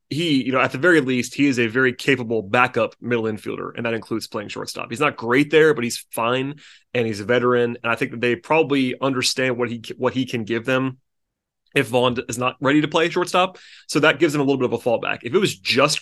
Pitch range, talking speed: 120-140 Hz, 250 wpm